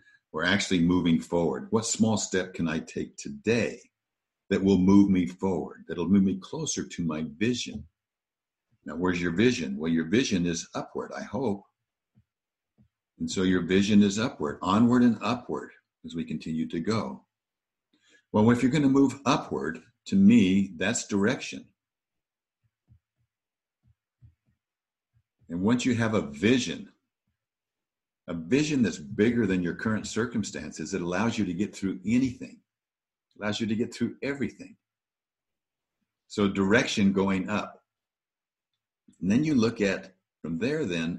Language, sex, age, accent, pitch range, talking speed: English, male, 60-79, American, 90-115 Hz, 145 wpm